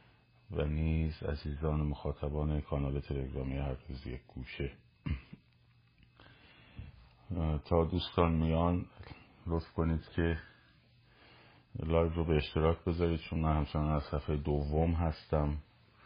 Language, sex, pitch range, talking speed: Persian, male, 70-85 Hz, 105 wpm